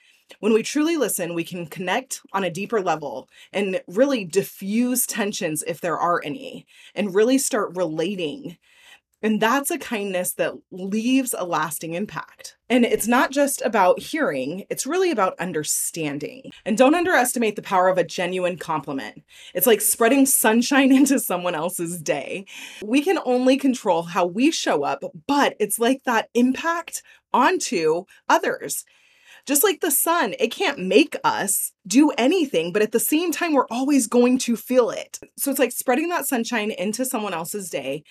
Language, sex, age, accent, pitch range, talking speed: English, female, 20-39, American, 185-275 Hz, 165 wpm